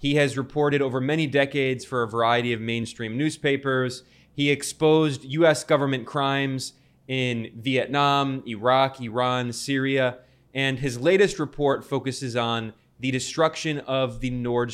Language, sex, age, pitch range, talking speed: English, male, 20-39, 120-150 Hz, 135 wpm